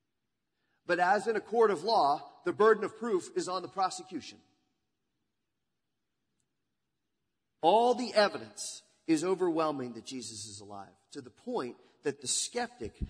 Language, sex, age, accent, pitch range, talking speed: English, male, 40-59, American, 145-215 Hz, 135 wpm